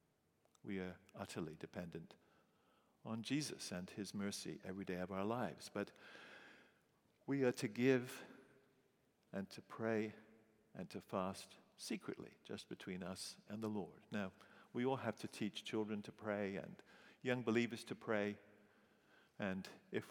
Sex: male